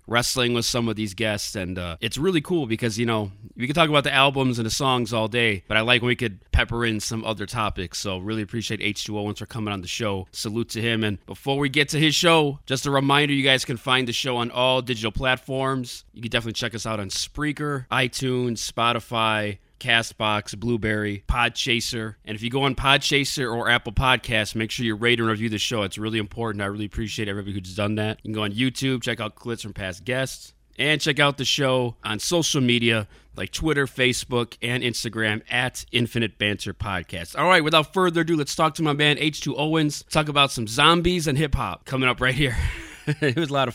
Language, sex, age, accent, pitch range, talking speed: English, male, 20-39, American, 105-140 Hz, 230 wpm